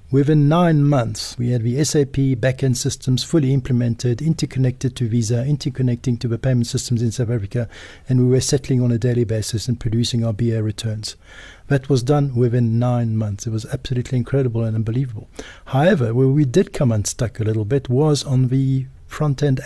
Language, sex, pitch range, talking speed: English, male, 120-145 Hz, 185 wpm